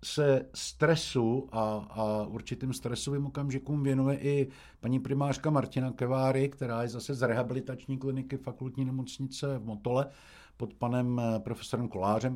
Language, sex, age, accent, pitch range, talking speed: Czech, male, 60-79, native, 115-140 Hz, 130 wpm